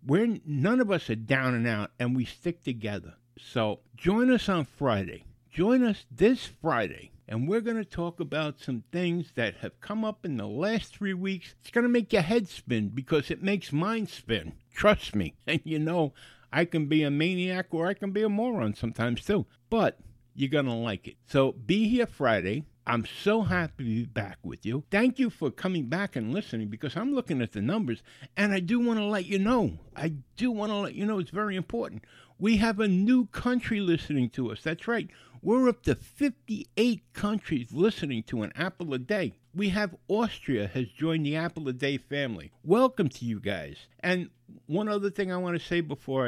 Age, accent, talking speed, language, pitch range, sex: 60-79, American, 210 wpm, English, 120-200 Hz, male